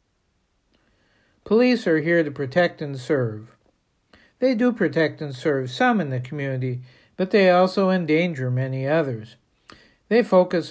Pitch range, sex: 135-185 Hz, male